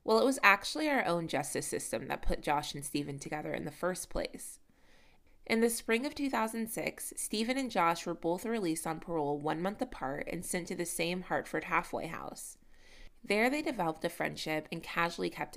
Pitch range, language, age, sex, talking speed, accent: 165-235 Hz, English, 20-39, female, 195 wpm, American